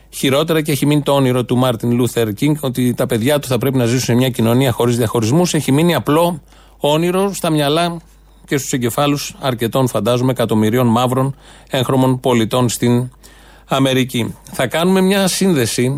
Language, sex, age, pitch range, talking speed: Greek, male, 30-49, 120-155 Hz, 165 wpm